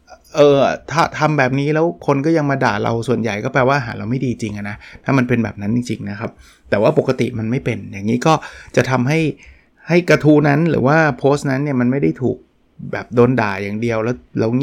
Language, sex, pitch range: Thai, male, 110-140 Hz